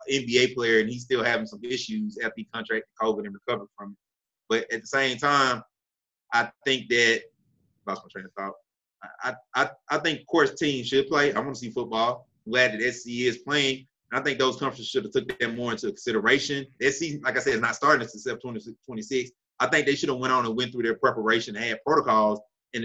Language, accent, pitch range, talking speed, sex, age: English, American, 115-150 Hz, 210 wpm, male, 30-49